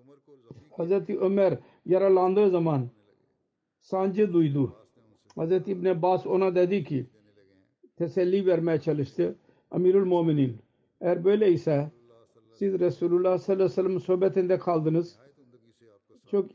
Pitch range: 150-190 Hz